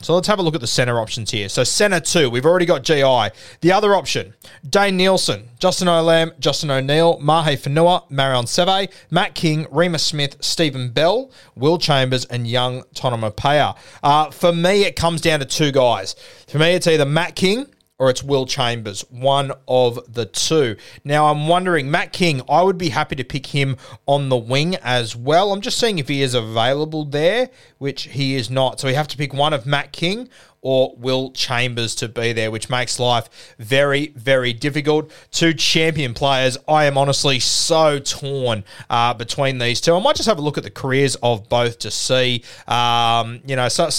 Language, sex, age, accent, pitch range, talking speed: English, male, 30-49, Australian, 125-160 Hz, 195 wpm